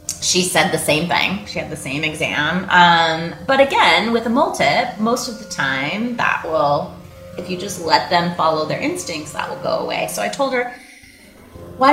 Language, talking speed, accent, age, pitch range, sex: English, 200 wpm, American, 30-49, 145-200 Hz, female